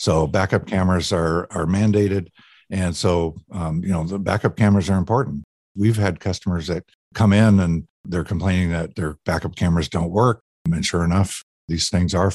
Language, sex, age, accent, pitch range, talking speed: English, male, 50-69, American, 90-110 Hz, 180 wpm